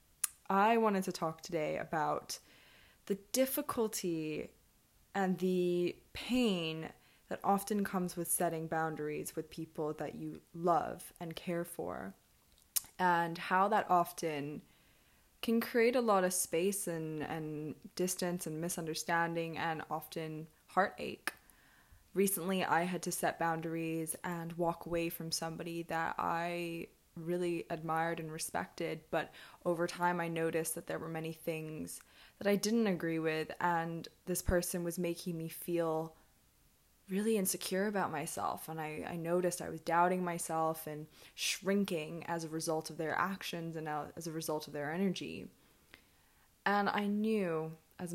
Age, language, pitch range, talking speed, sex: 20-39, English, 160-185 Hz, 140 wpm, female